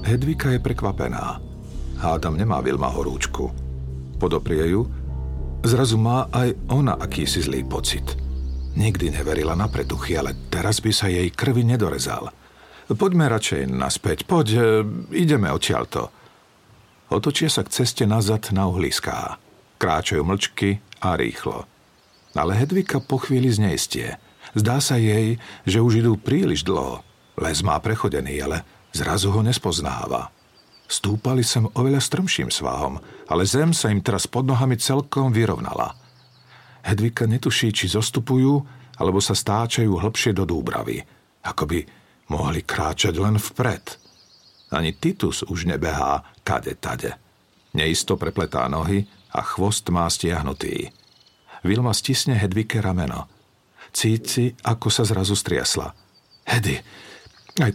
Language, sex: Slovak, male